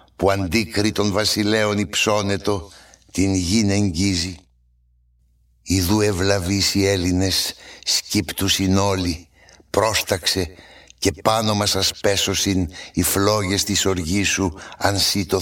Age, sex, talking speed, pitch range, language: 60-79, male, 105 wpm, 85-100 Hz, Greek